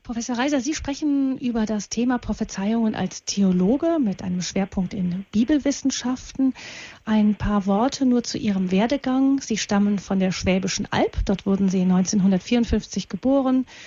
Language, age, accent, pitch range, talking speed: German, 40-59, German, 190-235 Hz, 145 wpm